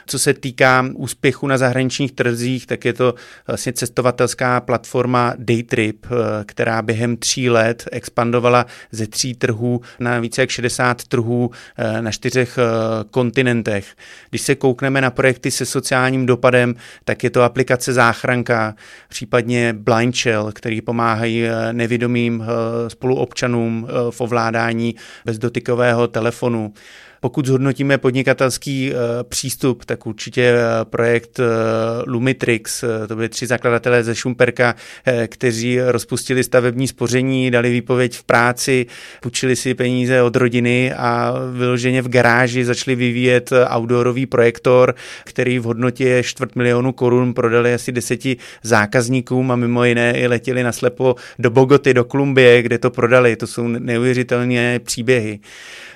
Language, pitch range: Czech, 120-130 Hz